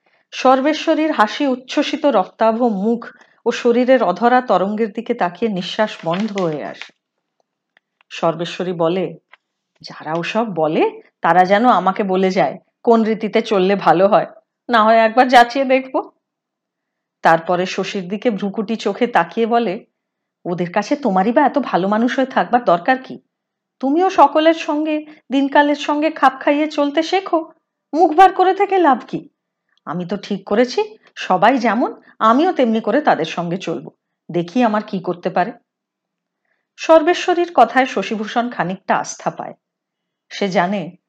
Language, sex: Hindi, female